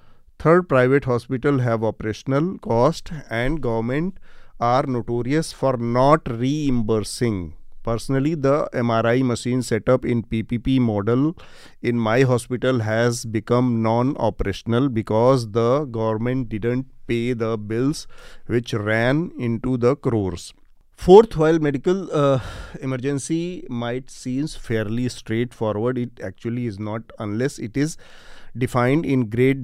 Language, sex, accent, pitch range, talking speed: Hindi, male, native, 115-145 Hz, 120 wpm